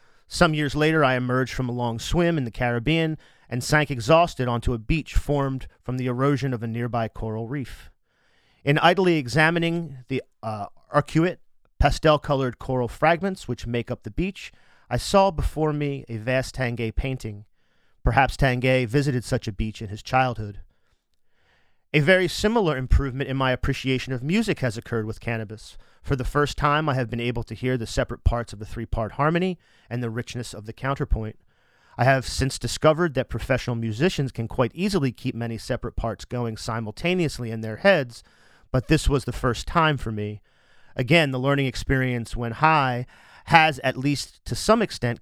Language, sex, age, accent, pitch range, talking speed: English, male, 40-59, American, 115-145 Hz, 175 wpm